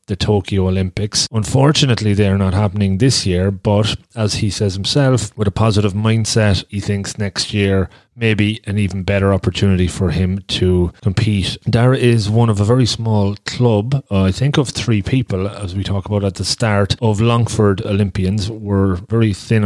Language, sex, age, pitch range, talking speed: English, male, 30-49, 100-115 Hz, 175 wpm